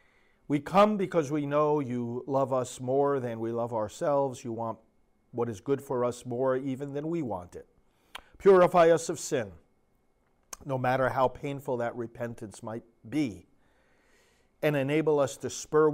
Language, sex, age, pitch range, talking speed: English, male, 40-59, 115-150 Hz, 160 wpm